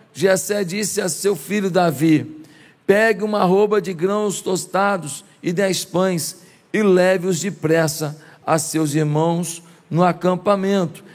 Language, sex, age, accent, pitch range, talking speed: Portuguese, male, 50-69, Brazilian, 165-210 Hz, 125 wpm